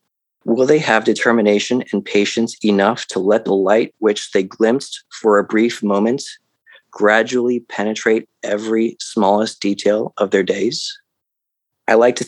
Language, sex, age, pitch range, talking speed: English, male, 20-39, 95-115 Hz, 140 wpm